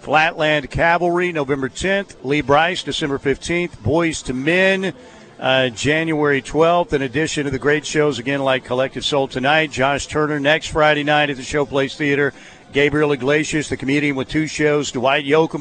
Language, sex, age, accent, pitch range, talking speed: English, male, 50-69, American, 135-160 Hz, 165 wpm